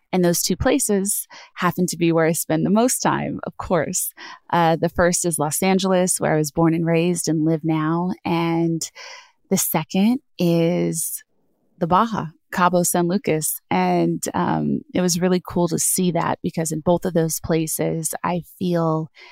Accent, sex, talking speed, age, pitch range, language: American, female, 175 wpm, 20-39, 165-190 Hz, English